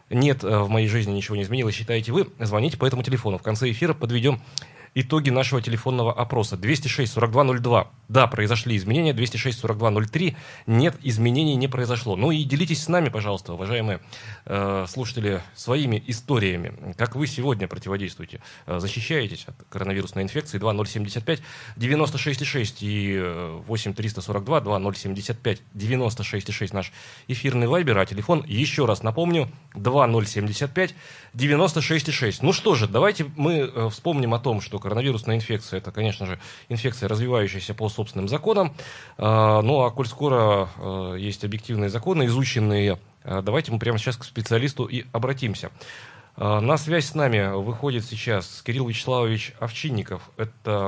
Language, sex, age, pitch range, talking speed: Russian, male, 20-39, 105-135 Hz, 130 wpm